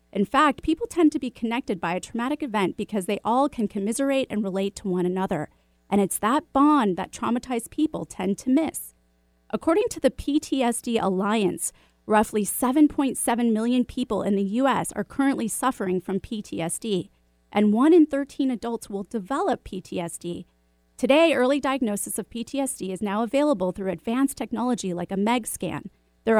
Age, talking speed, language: 30-49, 165 wpm, English